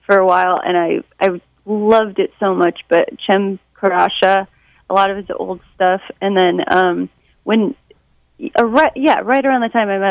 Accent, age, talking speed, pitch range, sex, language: American, 30-49, 190 wpm, 180-215 Hz, female, English